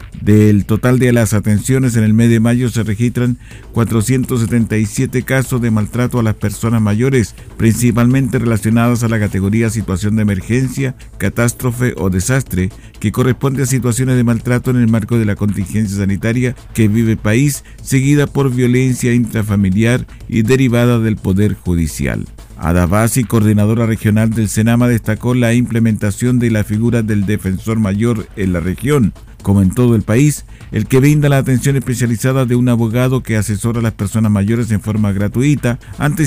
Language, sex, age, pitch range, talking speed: Spanish, male, 50-69, 105-125 Hz, 160 wpm